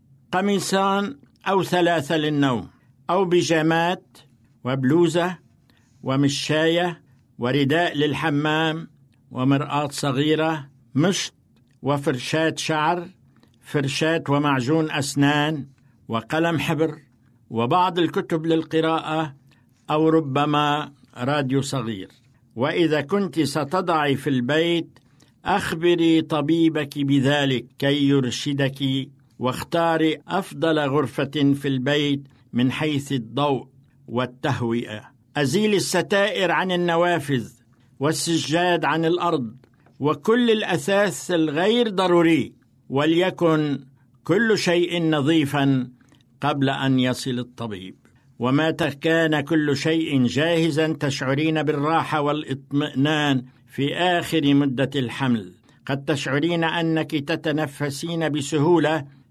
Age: 60-79